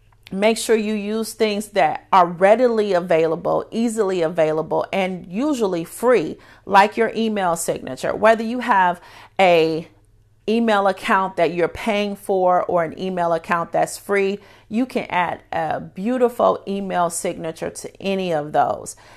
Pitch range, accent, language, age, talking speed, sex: 170-215 Hz, American, English, 40-59, 140 wpm, female